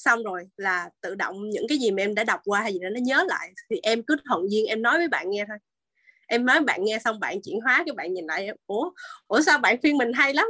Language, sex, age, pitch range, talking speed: Vietnamese, female, 20-39, 205-315 Hz, 290 wpm